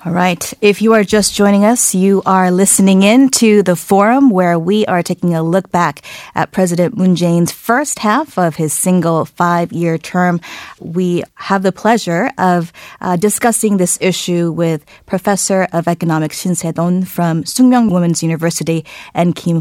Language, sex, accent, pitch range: Korean, female, American, 165-200 Hz